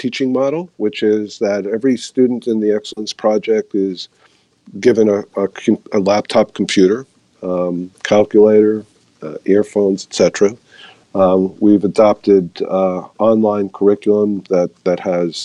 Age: 50-69